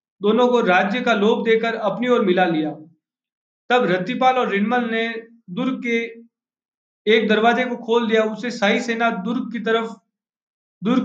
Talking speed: 155 wpm